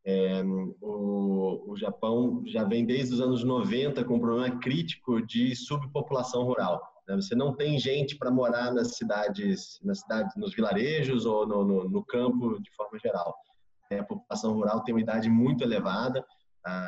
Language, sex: Portuguese, male